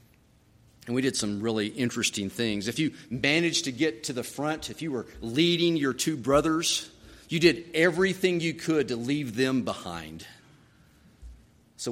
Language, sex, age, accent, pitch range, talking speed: English, male, 50-69, American, 110-140 Hz, 160 wpm